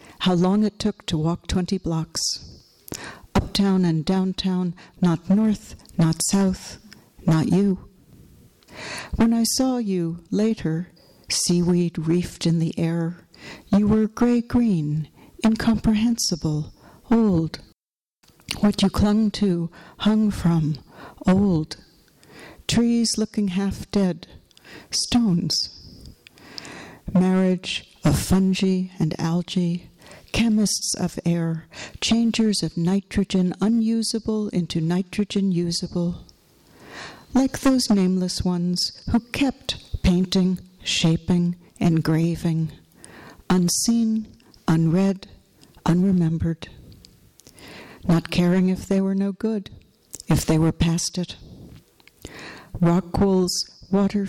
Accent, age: American, 60-79